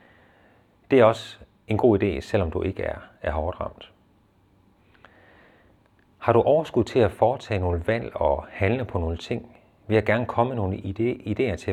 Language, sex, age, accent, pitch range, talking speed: Danish, male, 40-59, native, 90-110 Hz, 175 wpm